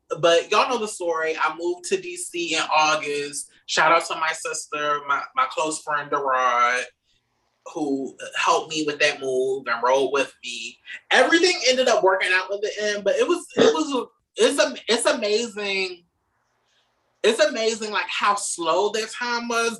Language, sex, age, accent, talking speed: English, male, 20-39, American, 170 wpm